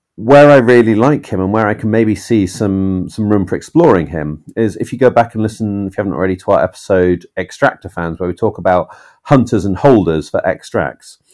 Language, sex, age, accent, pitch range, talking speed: English, male, 40-59, British, 95-120 Hz, 220 wpm